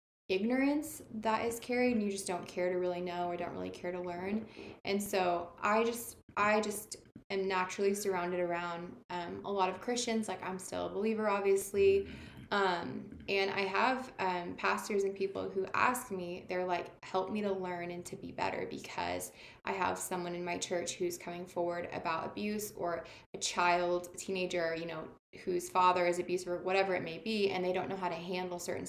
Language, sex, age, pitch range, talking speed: English, female, 20-39, 175-200 Hz, 195 wpm